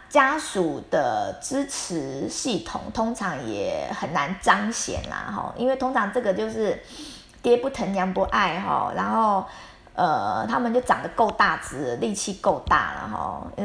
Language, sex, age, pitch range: Chinese, female, 20-39, 200-255 Hz